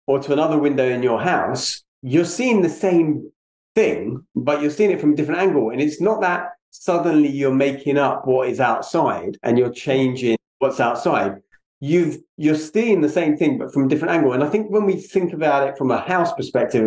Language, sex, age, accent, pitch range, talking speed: English, male, 30-49, British, 120-150 Hz, 210 wpm